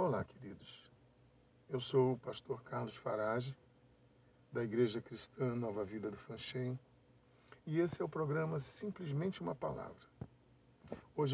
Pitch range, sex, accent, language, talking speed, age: 120-145 Hz, male, Brazilian, Portuguese, 125 wpm, 50-69